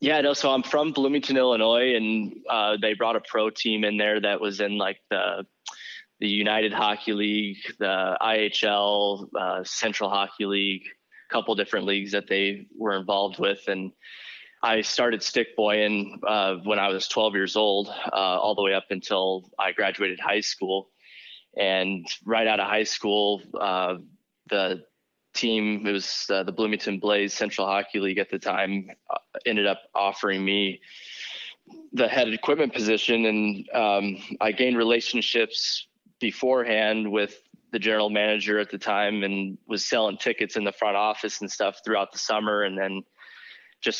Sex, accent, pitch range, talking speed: male, American, 100-110 Hz, 165 wpm